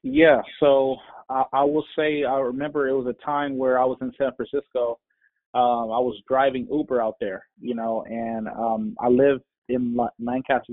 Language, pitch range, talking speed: English, 120-145 Hz, 185 wpm